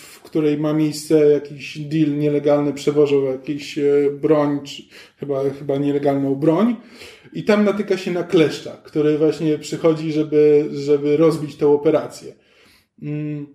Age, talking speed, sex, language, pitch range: 20-39, 125 wpm, male, Polish, 150-170 Hz